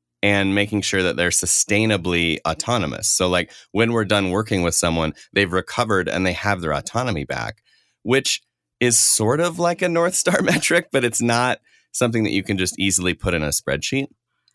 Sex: male